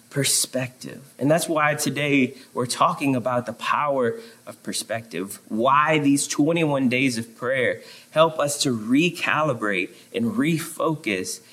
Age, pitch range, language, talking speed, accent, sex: 30-49, 120-155 Hz, English, 125 wpm, American, male